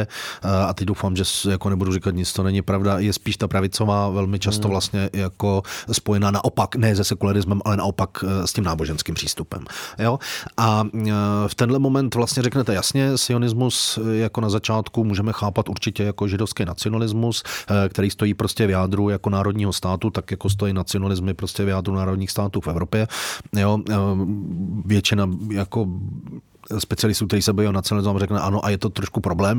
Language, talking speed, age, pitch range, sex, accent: Czech, 160 wpm, 30-49, 95-110 Hz, male, native